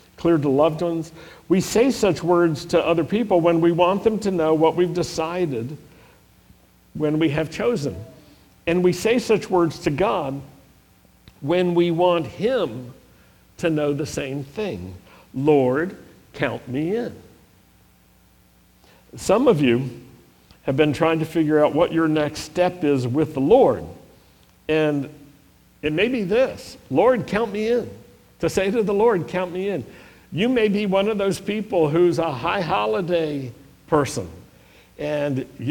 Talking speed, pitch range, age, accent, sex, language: 155 wpm, 140-180 Hz, 60-79, American, male, English